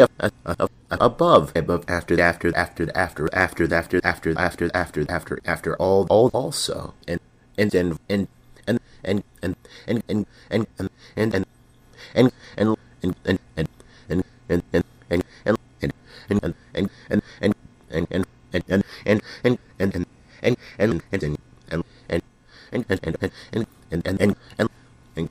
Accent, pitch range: American, 85-120 Hz